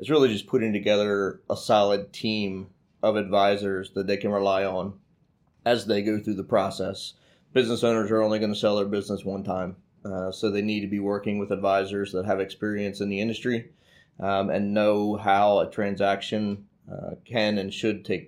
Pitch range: 100-110 Hz